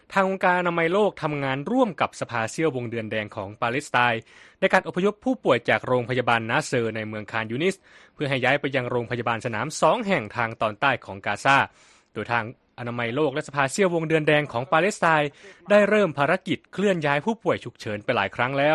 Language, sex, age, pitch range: Thai, male, 20-39, 115-165 Hz